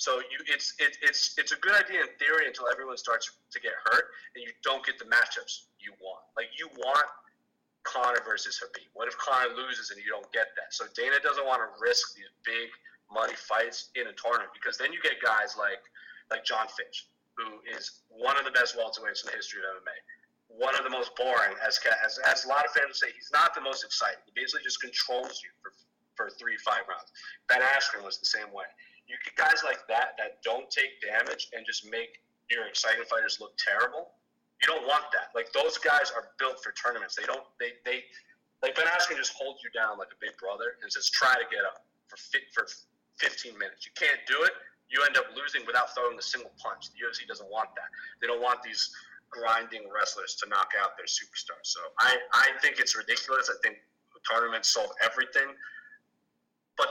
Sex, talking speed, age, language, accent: male, 215 wpm, 30-49, English, American